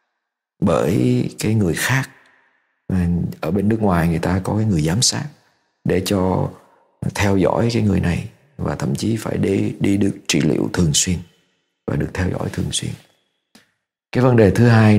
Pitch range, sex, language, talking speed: 95-115 Hz, male, Vietnamese, 175 wpm